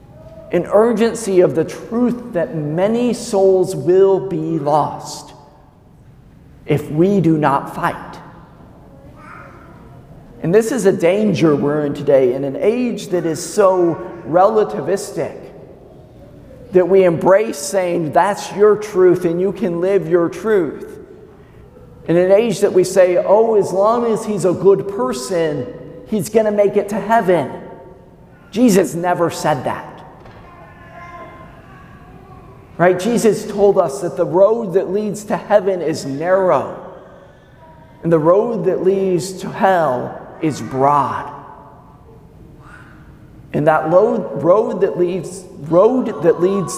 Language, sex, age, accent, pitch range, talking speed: English, male, 50-69, American, 150-200 Hz, 125 wpm